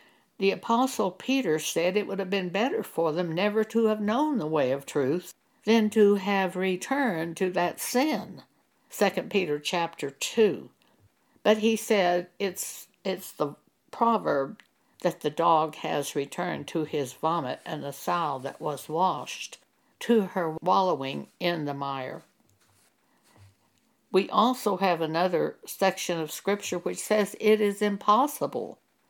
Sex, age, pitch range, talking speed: female, 60-79, 165-215 Hz, 140 wpm